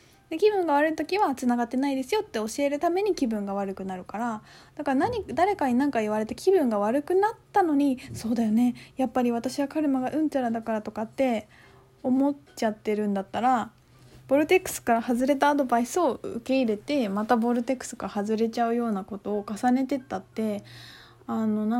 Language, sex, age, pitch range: Japanese, female, 20-39, 200-270 Hz